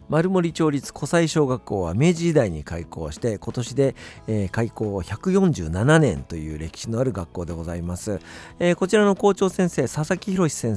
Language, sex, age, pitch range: Japanese, male, 50-69, 100-150 Hz